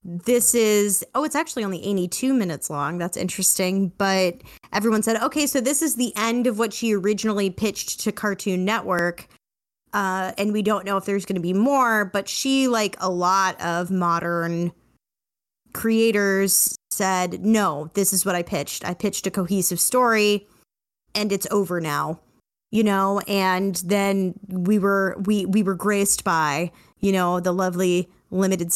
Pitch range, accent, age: 180-210 Hz, American, 20-39